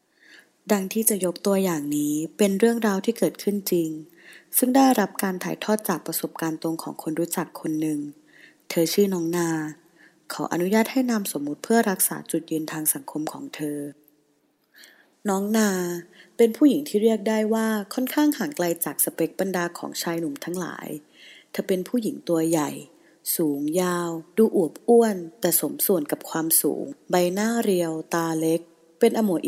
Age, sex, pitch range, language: 20-39, female, 160-220 Hz, Thai